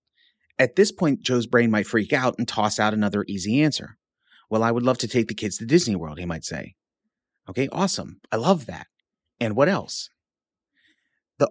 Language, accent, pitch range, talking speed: English, American, 110-155 Hz, 195 wpm